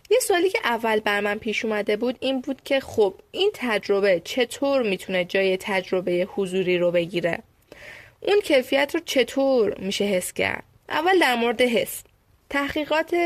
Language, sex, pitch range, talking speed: Persian, female, 200-280 Hz, 155 wpm